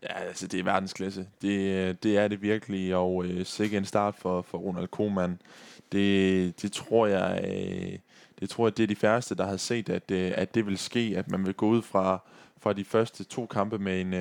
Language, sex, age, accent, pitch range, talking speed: Danish, male, 20-39, native, 95-110 Hz, 225 wpm